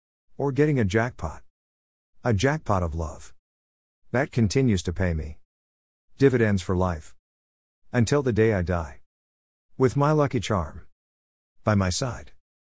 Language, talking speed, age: English, 130 wpm, 50-69